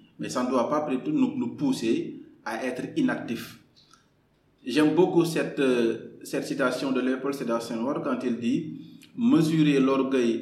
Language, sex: French, male